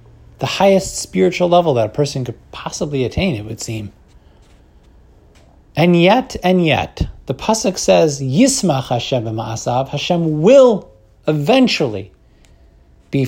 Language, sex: English, male